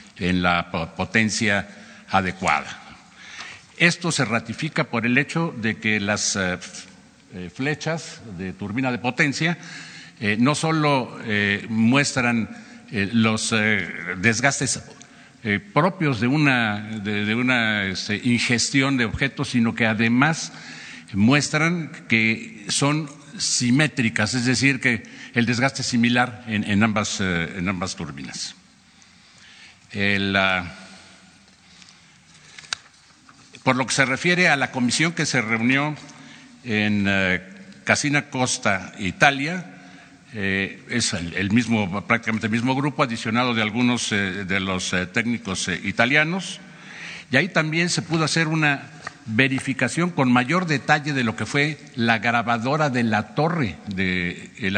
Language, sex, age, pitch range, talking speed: Spanish, male, 50-69, 105-145 Hz, 110 wpm